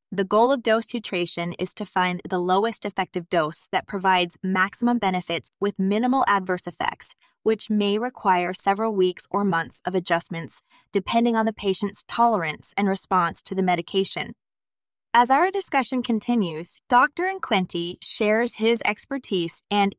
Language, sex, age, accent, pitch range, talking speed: English, female, 20-39, American, 185-230 Hz, 145 wpm